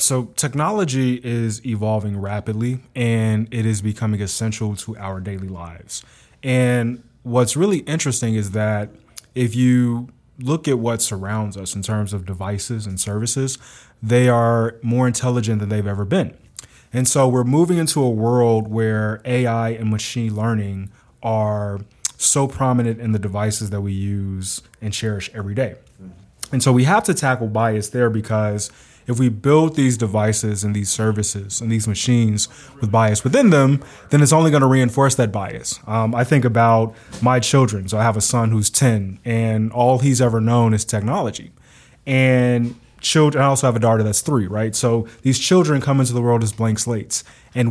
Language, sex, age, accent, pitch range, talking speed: English, male, 20-39, American, 105-125 Hz, 175 wpm